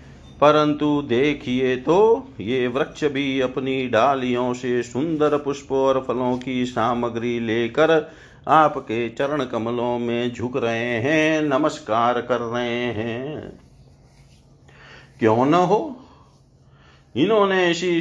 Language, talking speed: Hindi, 105 wpm